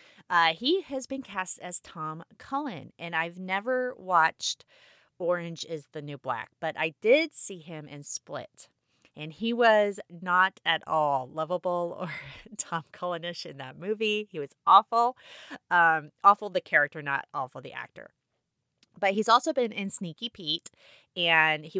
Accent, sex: American, female